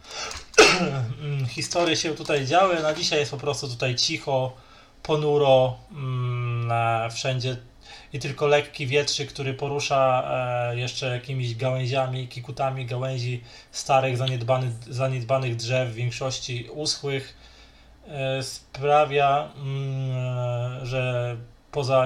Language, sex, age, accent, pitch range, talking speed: Polish, male, 20-39, native, 120-140 Hz, 90 wpm